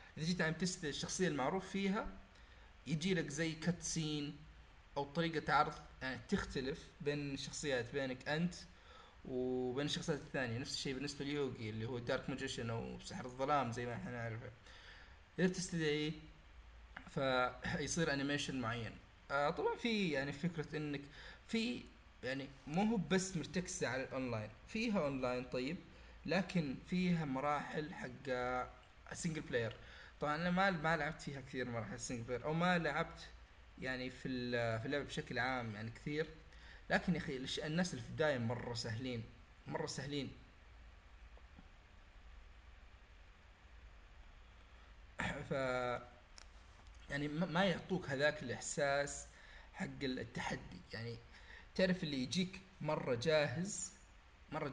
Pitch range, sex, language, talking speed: 115-160 Hz, male, Arabic, 125 wpm